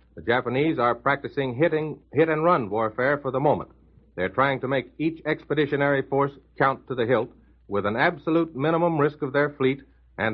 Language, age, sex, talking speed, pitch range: English, 60-79, male, 170 wpm, 115-150 Hz